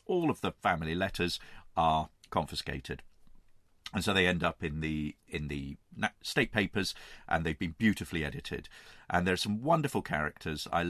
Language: English